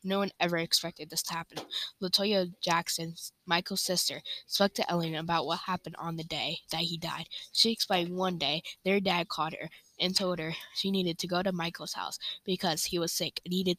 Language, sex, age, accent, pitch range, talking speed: English, female, 10-29, American, 165-190 Hz, 205 wpm